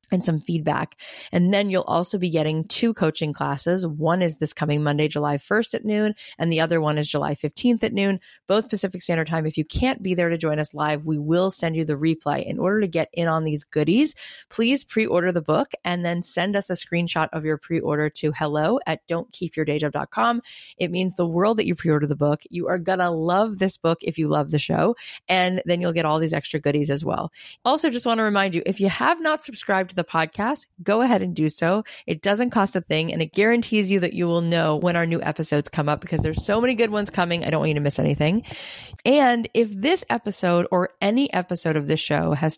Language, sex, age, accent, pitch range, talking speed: English, female, 30-49, American, 155-200 Hz, 240 wpm